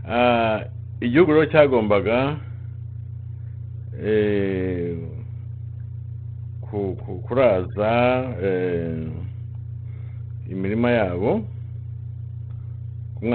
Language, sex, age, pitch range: English, male, 50-69, 110-115 Hz